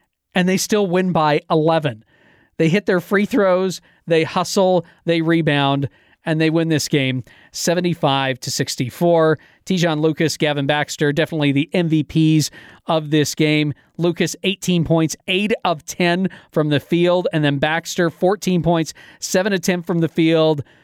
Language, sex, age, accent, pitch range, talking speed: English, male, 40-59, American, 155-180 Hz, 150 wpm